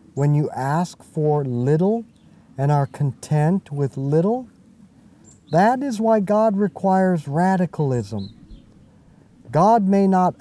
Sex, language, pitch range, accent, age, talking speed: male, English, 145-195 Hz, American, 50-69, 110 wpm